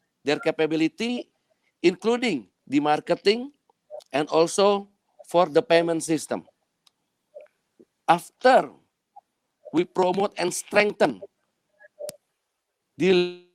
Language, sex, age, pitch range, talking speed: Malay, male, 50-69, 165-225 Hz, 75 wpm